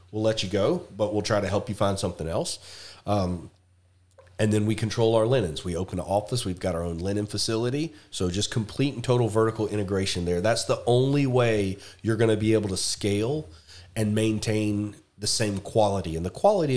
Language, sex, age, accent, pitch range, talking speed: English, male, 30-49, American, 95-115 Hz, 205 wpm